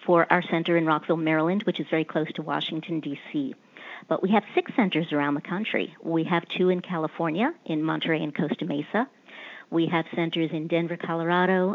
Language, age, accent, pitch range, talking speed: English, 50-69, American, 165-205 Hz, 190 wpm